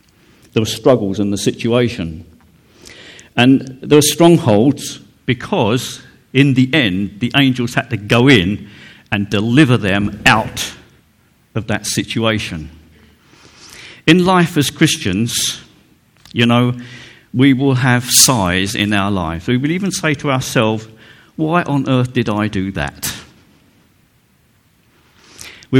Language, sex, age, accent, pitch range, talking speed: English, male, 50-69, British, 95-145 Hz, 125 wpm